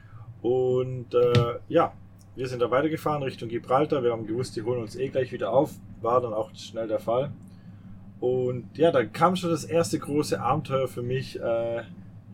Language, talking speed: German, 180 wpm